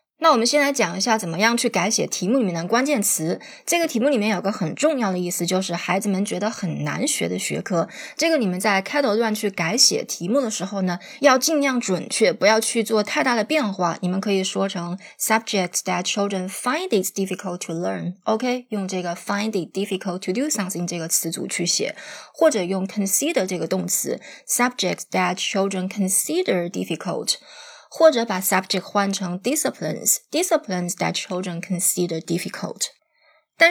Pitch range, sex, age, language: 180-235 Hz, female, 20-39, Chinese